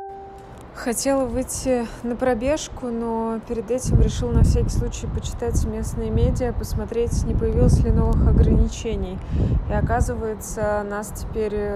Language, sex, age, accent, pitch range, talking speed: Russian, female, 20-39, native, 155-220 Hz, 120 wpm